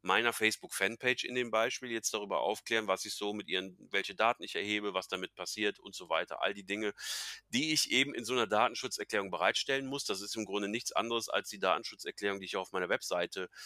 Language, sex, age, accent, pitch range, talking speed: German, male, 30-49, German, 105-130 Hz, 215 wpm